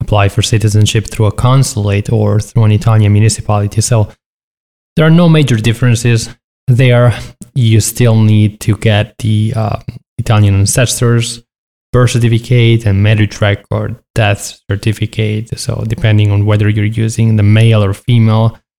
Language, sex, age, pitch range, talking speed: English, male, 20-39, 105-120 Hz, 140 wpm